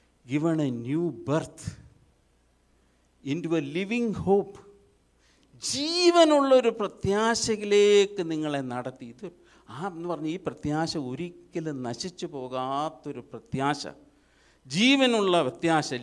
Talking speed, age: 70 wpm, 50-69